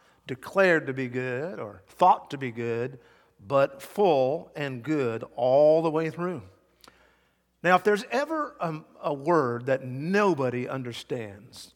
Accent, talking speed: American, 140 wpm